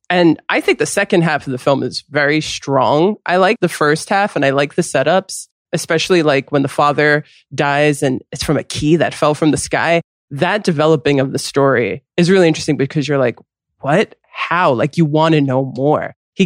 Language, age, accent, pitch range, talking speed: English, 20-39, American, 145-190 Hz, 210 wpm